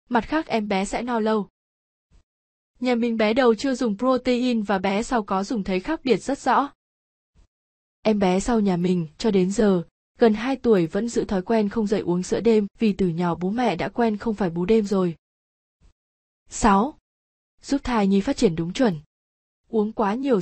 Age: 20-39